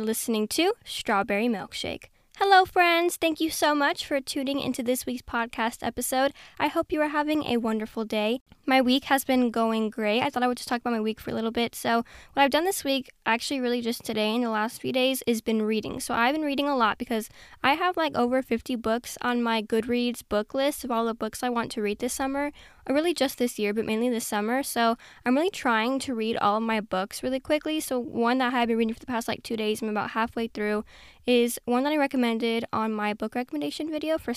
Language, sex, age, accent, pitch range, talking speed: English, female, 10-29, American, 225-265 Hz, 240 wpm